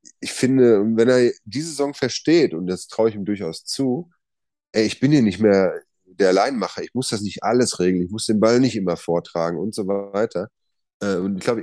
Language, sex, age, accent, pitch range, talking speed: German, male, 30-49, German, 100-125 Hz, 210 wpm